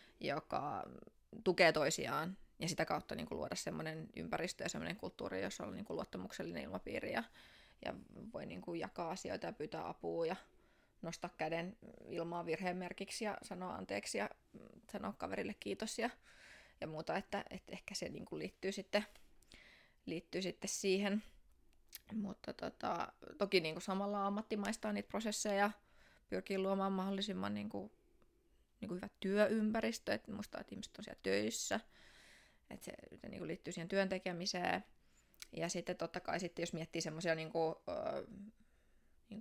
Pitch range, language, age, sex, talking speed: 165-205 Hz, Finnish, 20-39, female, 150 wpm